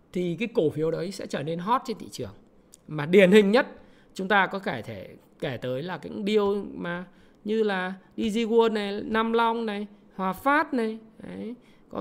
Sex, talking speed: male, 195 wpm